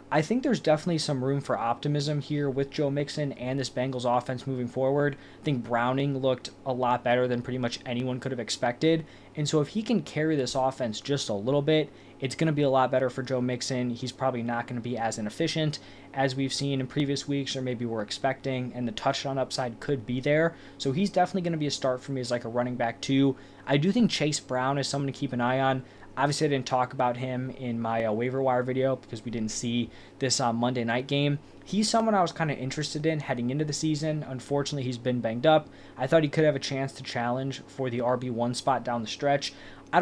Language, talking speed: English, 245 wpm